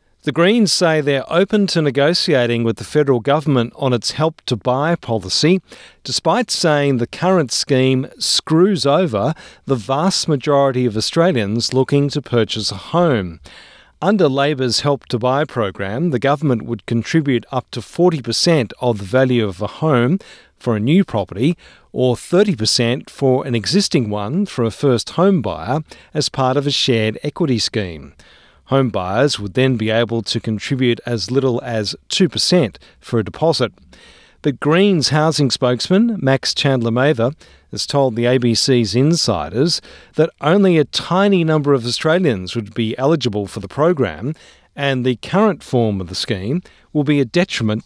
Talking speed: 150 wpm